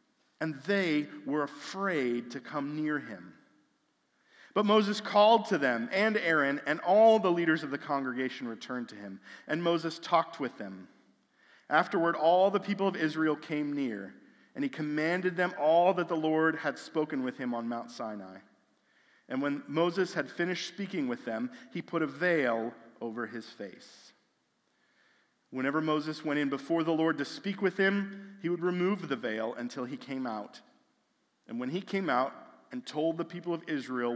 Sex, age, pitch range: male, 40-59, 125-175 Hz